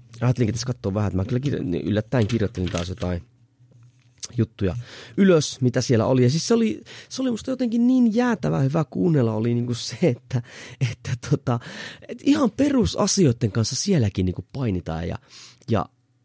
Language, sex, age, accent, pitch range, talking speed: Finnish, male, 30-49, native, 110-145 Hz, 160 wpm